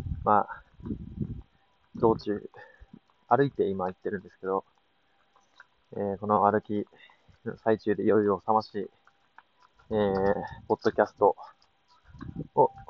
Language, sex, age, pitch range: Japanese, male, 20-39, 100-120 Hz